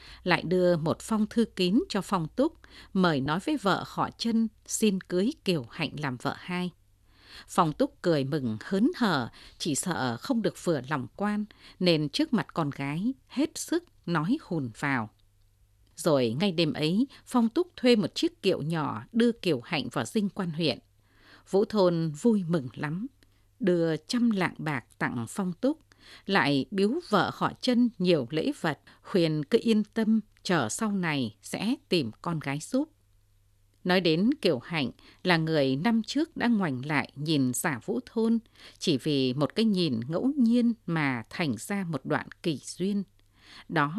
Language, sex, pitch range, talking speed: English, female, 140-225 Hz, 170 wpm